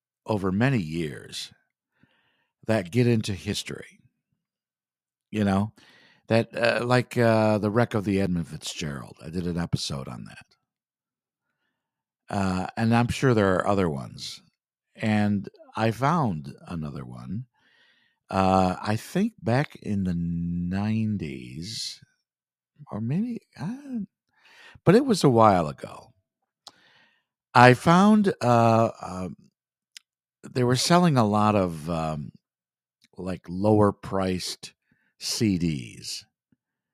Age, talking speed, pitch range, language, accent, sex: 60-79, 115 wpm, 90-125 Hz, English, American, male